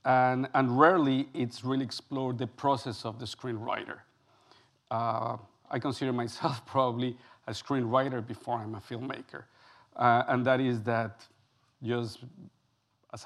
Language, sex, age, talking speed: English, male, 50-69, 130 wpm